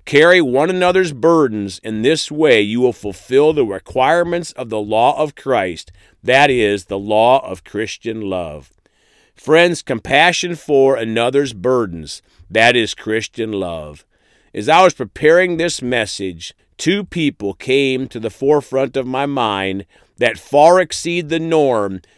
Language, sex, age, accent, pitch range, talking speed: English, male, 40-59, American, 105-155 Hz, 145 wpm